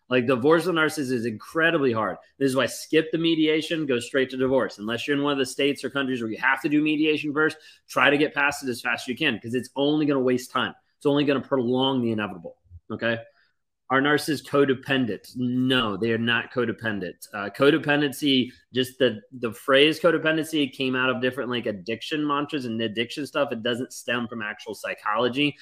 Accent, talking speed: American, 210 wpm